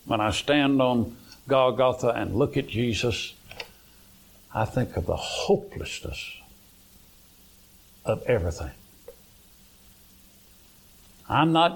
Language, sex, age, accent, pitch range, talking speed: English, male, 60-79, American, 95-145 Hz, 90 wpm